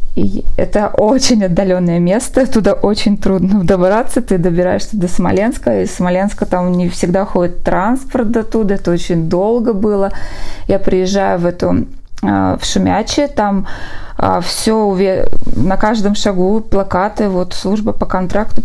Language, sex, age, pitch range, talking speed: Russian, female, 20-39, 185-225 Hz, 135 wpm